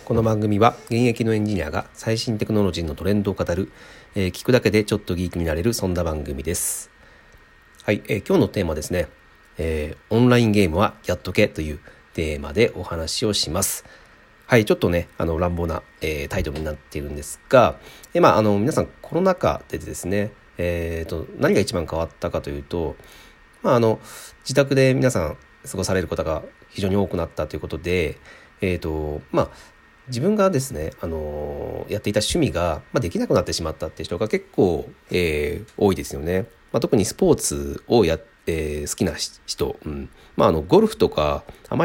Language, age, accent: Japanese, 40-59, native